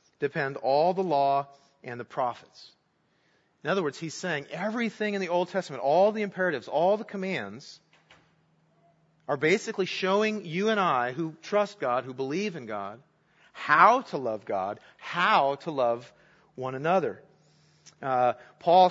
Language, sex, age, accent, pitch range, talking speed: English, male, 40-59, American, 135-195 Hz, 150 wpm